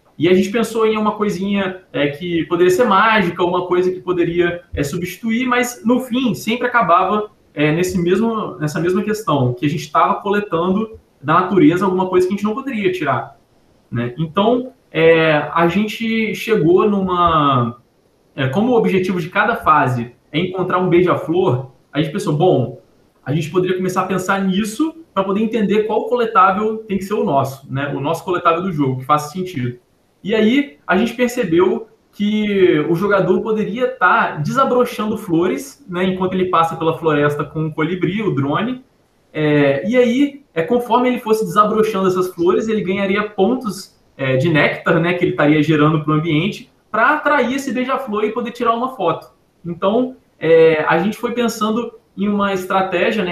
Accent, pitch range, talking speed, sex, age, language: Brazilian, 165-220 Hz, 180 wpm, male, 20-39, Portuguese